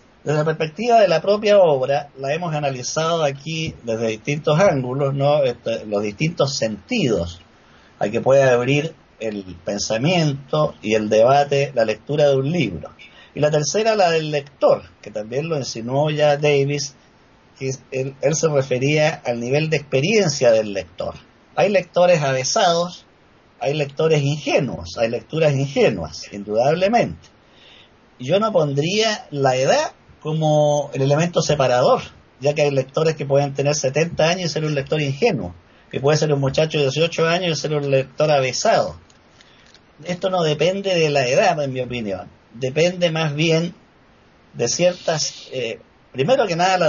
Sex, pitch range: male, 130-160 Hz